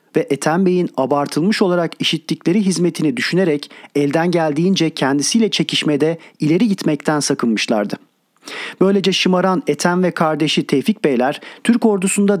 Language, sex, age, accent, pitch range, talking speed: Turkish, male, 40-59, native, 150-190 Hz, 115 wpm